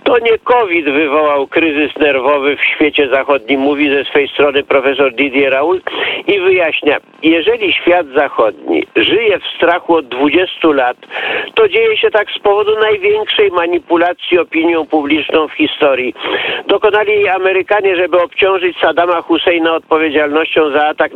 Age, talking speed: 50-69, 135 wpm